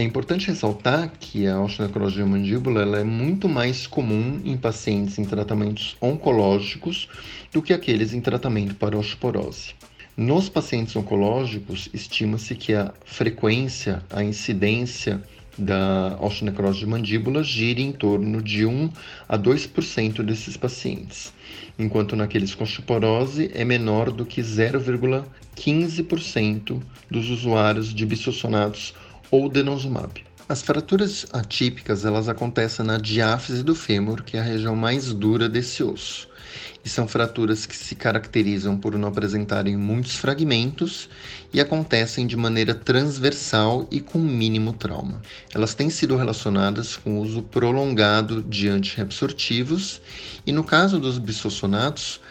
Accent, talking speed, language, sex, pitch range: Brazilian, 130 wpm, Portuguese, male, 105-130 Hz